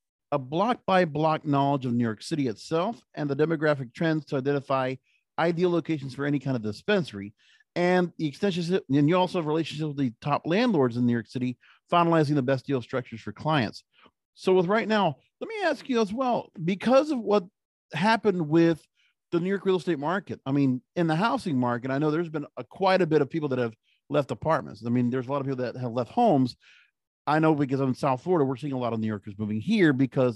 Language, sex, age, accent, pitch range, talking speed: English, male, 40-59, American, 130-175 Hz, 225 wpm